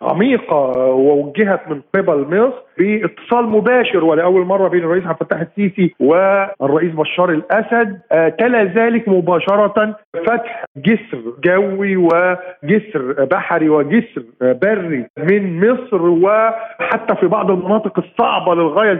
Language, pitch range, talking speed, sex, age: Arabic, 165-215 Hz, 110 wpm, male, 50-69